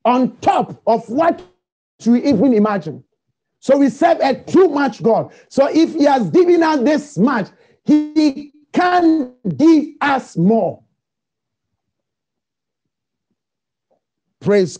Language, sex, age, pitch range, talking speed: English, male, 40-59, 160-235 Hz, 115 wpm